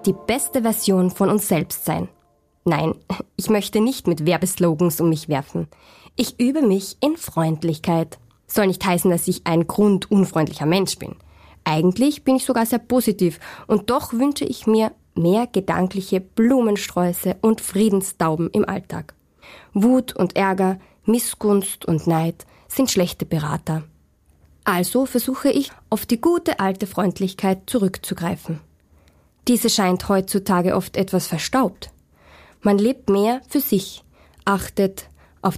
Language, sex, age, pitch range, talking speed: German, female, 20-39, 175-230 Hz, 135 wpm